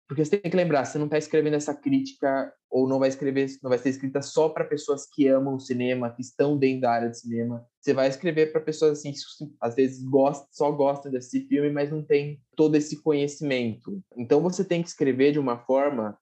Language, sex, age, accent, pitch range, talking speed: Portuguese, male, 20-39, Brazilian, 125-150 Hz, 225 wpm